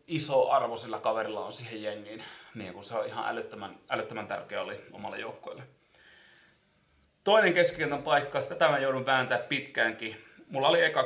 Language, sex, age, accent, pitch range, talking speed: Finnish, male, 30-49, native, 105-130 Hz, 150 wpm